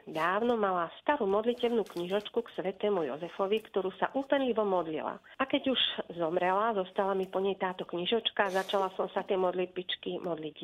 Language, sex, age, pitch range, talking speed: Slovak, female, 40-59, 180-220 Hz, 160 wpm